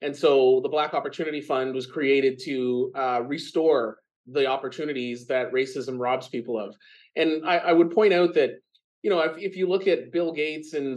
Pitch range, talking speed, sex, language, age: 135-165 Hz, 190 wpm, male, English, 30-49